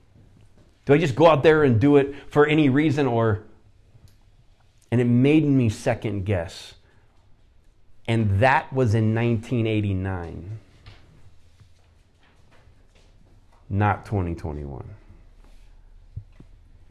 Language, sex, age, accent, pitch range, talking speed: English, male, 30-49, American, 95-110 Hz, 90 wpm